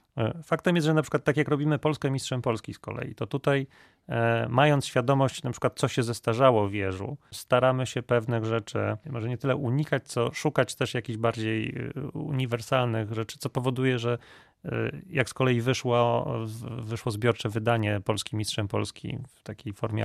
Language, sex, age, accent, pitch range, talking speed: Polish, male, 30-49, native, 110-140 Hz, 165 wpm